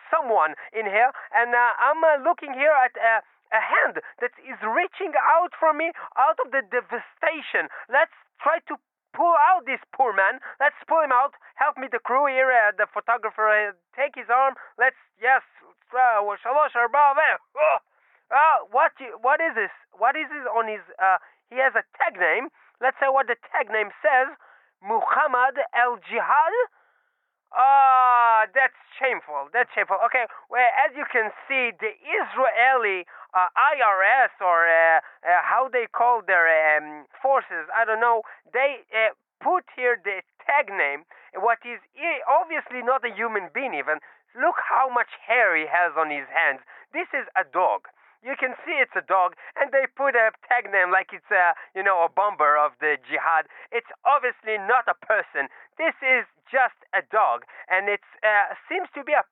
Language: Hebrew